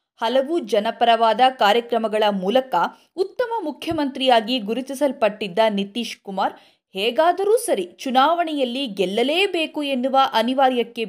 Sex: female